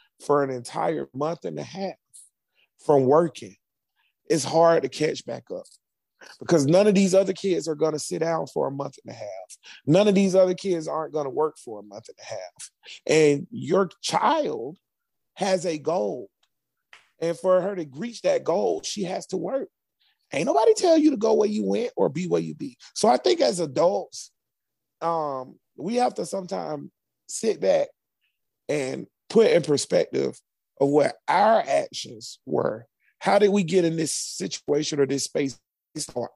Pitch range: 155-195 Hz